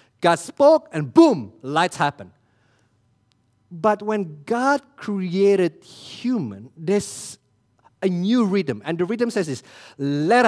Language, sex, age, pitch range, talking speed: English, male, 50-69, 115-175 Hz, 120 wpm